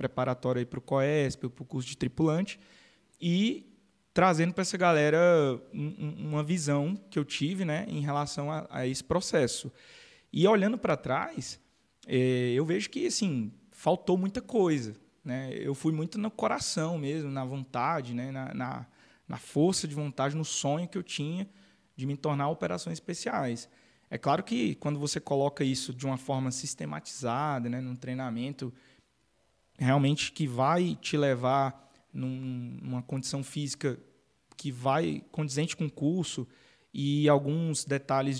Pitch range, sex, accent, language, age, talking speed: 130-165 Hz, male, Brazilian, Portuguese, 20-39, 150 wpm